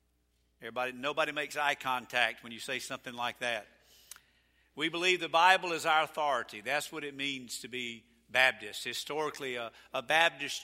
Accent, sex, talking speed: American, male, 165 wpm